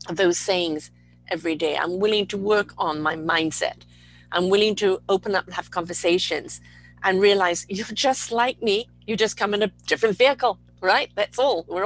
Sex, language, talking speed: female, English, 180 wpm